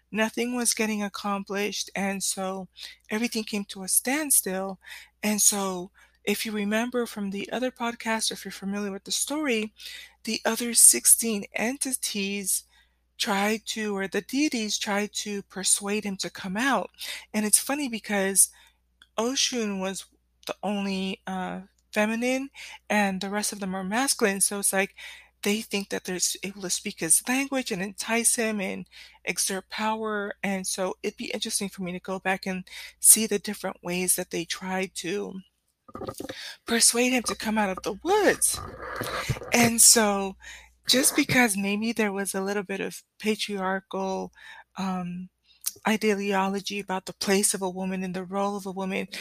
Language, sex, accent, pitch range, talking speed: English, female, American, 190-225 Hz, 160 wpm